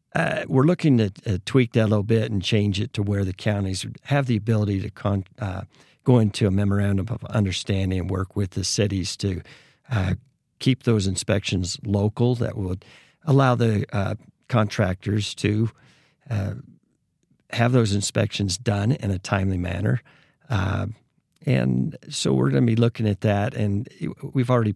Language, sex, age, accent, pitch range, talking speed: English, male, 50-69, American, 100-120 Hz, 165 wpm